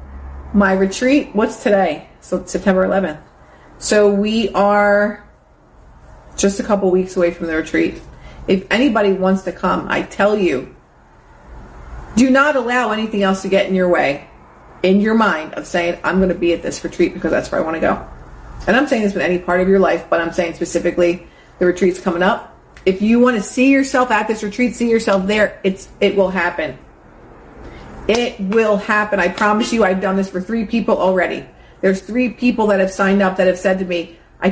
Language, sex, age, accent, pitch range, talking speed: English, female, 40-59, American, 180-210 Hz, 200 wpm